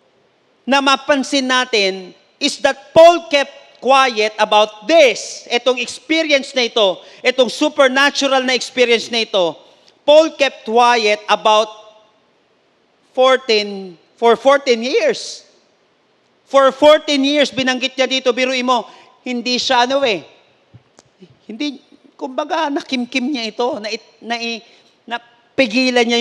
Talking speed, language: 110 wpm, English